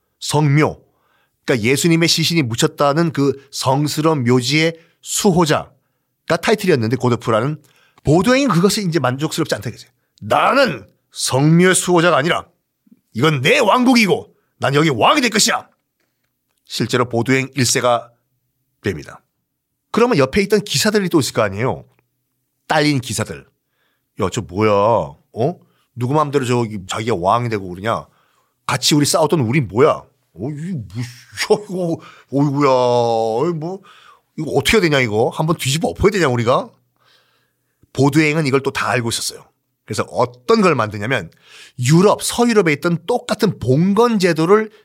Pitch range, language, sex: 125-175 Hz, Korean, male